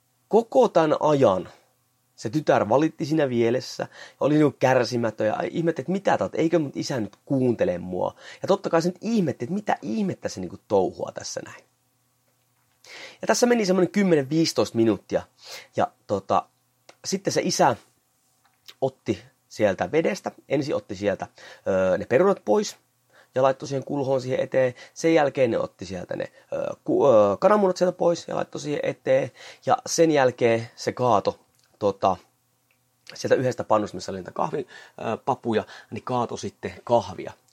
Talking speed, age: 150 wpm, 30-49